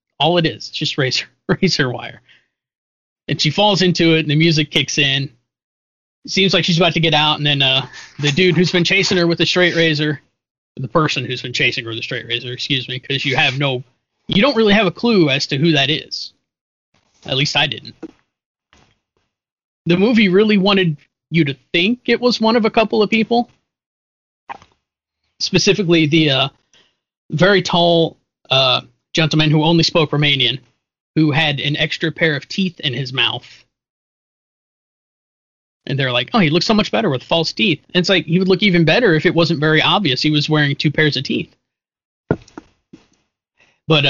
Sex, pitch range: male, 135-170 Hz